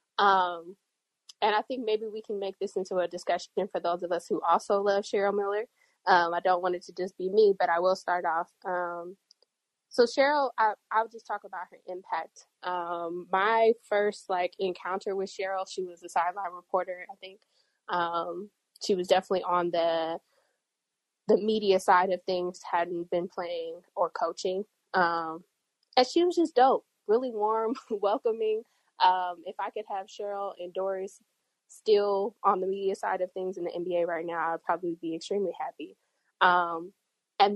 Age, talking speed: 20-39, 175 wpm